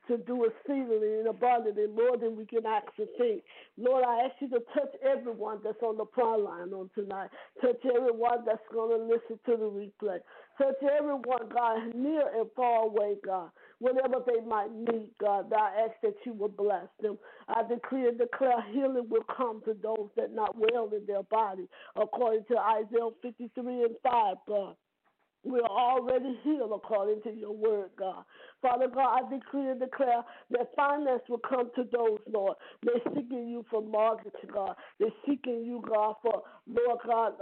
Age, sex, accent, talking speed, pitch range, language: 50-69, female, American, 180 wpm, 215-250 Hz, English